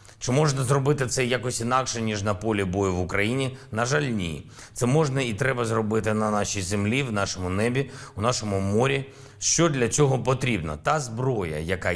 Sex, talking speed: male, 180 wpm